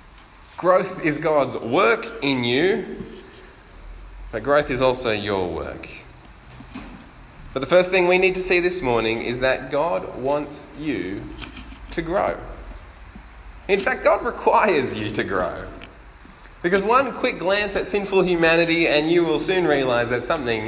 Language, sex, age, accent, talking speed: English, male, 20-39, Australian, 145 wpm